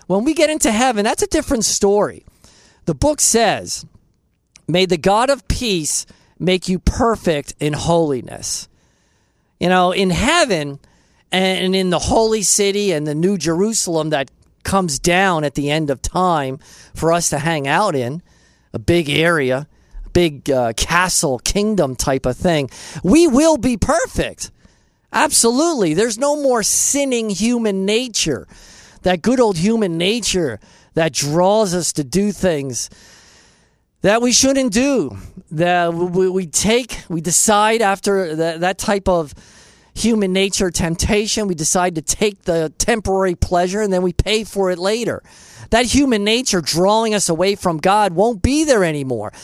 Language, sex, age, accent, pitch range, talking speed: English, male, 40-59, American, 165-215 Hz, 150 wpm